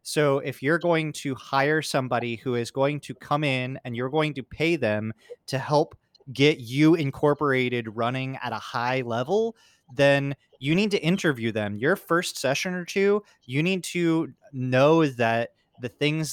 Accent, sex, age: American, male, 20-39